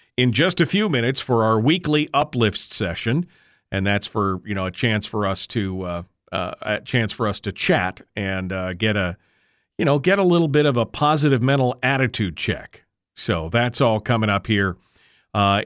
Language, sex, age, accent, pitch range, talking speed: English, male, 50-69, American, 110-145 Hz, 195 wpm